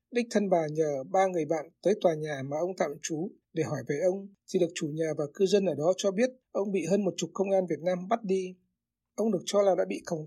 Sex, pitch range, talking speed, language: male, 165-200 Hz, 275 wpm, Vietnamese